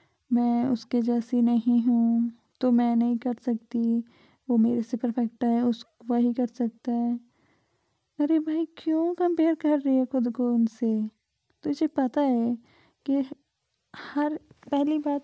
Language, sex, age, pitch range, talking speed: Hindi, female, 20-39, 250-300 Hz, 145 wpm